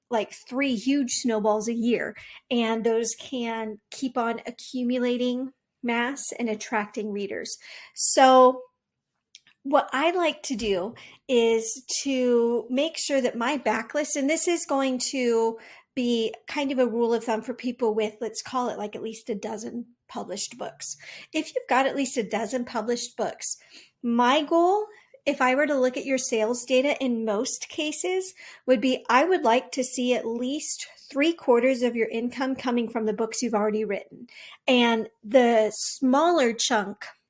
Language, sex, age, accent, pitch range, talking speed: English, female, 40-59, American, 230-275 Hz, 165 wpm